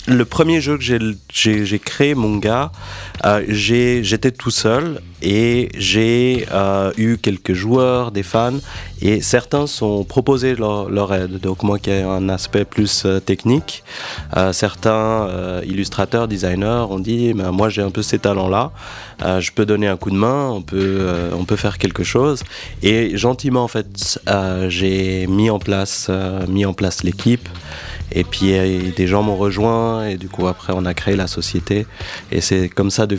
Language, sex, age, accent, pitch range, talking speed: French, male, 30-49, French, 95-110 Hz, 190 wpm